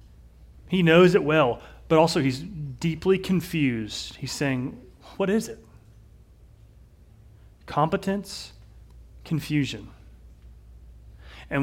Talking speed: 90 wpm